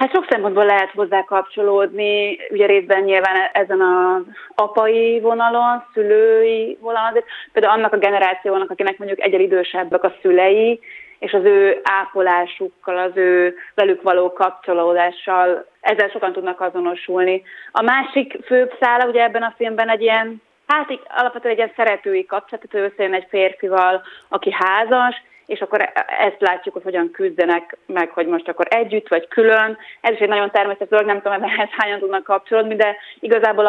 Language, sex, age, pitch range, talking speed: Hungarian, female, 30-49, 185-225 Hz, 160 wpm